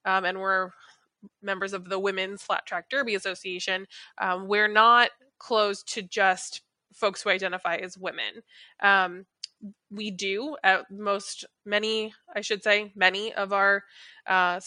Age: 20-39